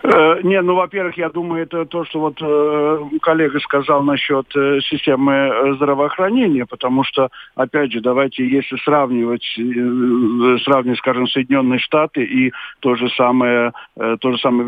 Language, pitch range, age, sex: Russian, 125-145 Hz, 50-69, male